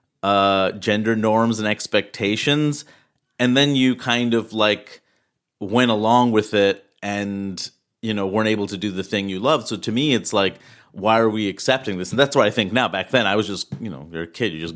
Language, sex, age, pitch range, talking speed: English, male, 30-49, 95-115 Hz, 220 wpm